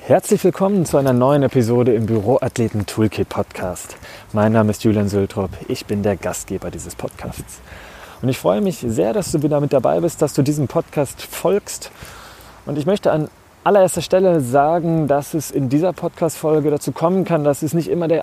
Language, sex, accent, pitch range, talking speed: German, male, German, 110-150 Hz, 180 wpm